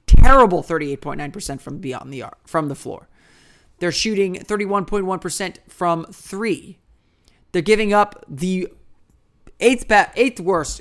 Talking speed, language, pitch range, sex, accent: 100 wpm, English, 150-195 Hz, male, American